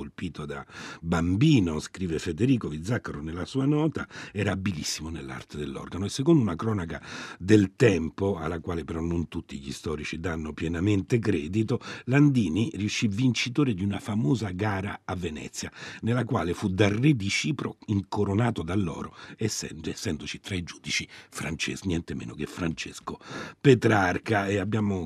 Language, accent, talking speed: Italian, native, 140 wpm